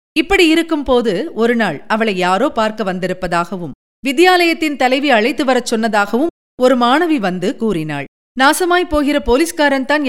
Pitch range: 205-275 Hz